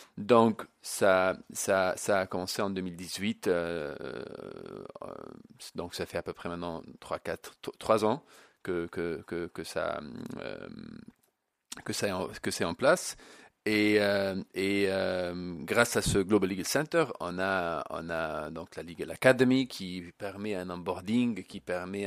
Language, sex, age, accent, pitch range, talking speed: French, male, 40-59, French, 90-120 Hz, 155 wpm